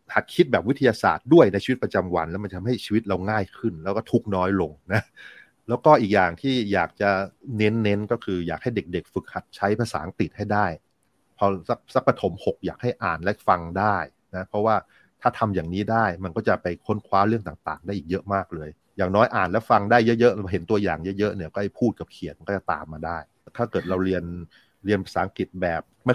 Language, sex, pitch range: Thai, male, 90-110 Hz